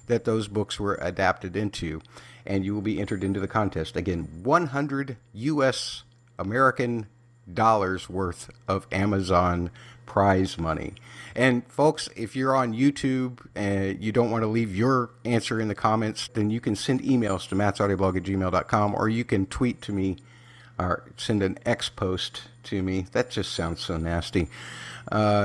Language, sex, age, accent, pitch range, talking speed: English, male, 50-69, American, 95-125 Hz, 165 wpm